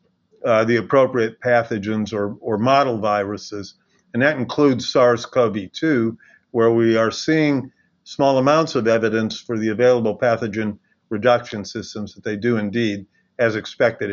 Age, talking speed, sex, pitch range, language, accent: 50-69, 135 wpm, male, 115-150 Hz, English, American